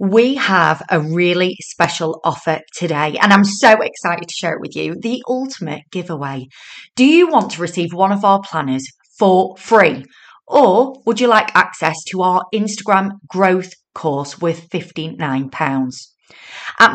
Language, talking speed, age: English, 150 wpm, 30-49